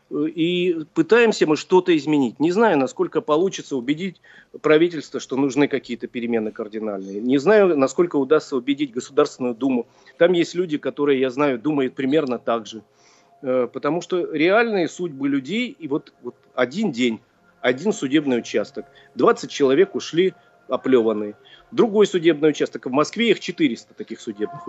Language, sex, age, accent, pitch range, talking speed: Russian, male, 40-59, native, 135-200 Hz, 145 wpm